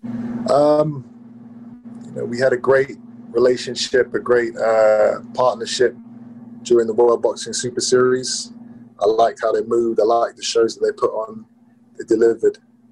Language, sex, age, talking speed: English, male, 20-39, 155 wpm